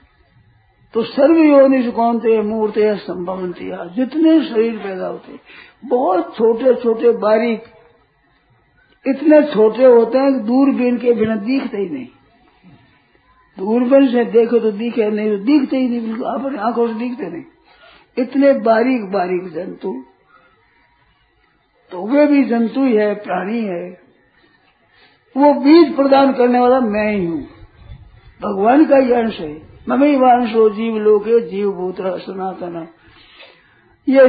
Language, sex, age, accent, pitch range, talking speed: Hindi, male, 50-69, native, 205-260 Hz, 130 wpm